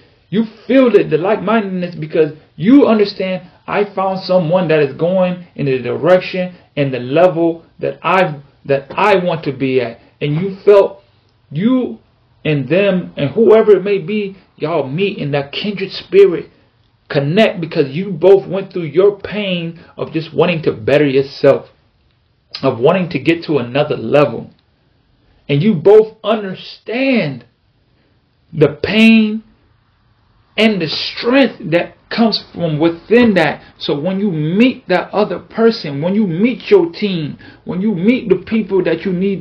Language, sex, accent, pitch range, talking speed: English, male, American, 150-205 Hz, 150 wpm